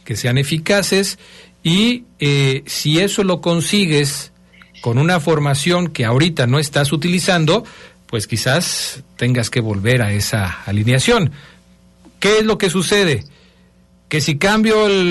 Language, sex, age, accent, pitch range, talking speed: Spanish, male, 50-69, Mexican, 130-180 Hz, 135 wpm